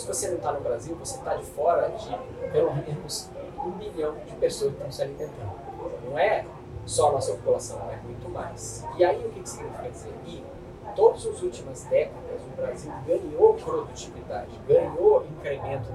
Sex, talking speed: male, 175 wpm